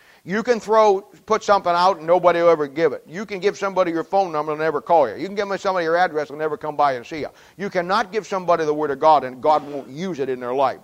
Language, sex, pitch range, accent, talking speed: English, male, 155-195 Hz, American, 300 wpm